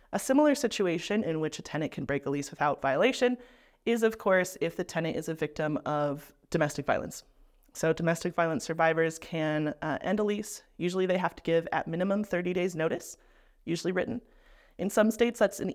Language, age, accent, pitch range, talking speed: English, 30-49, American, 155-190 Hz, 195 wpm